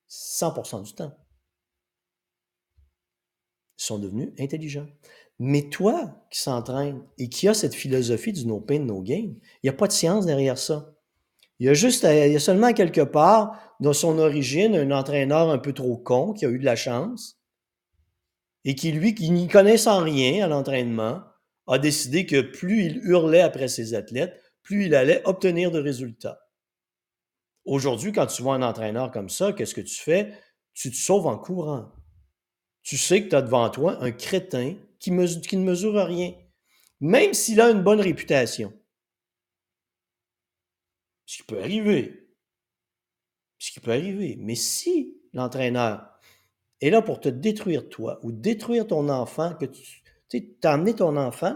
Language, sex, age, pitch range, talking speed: French, male, 50-69, 115-180 Hz, 170 wpm